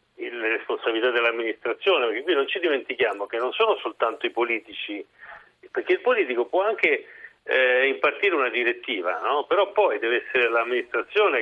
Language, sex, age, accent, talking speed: Italian, male, 50-69, native, 150 wpm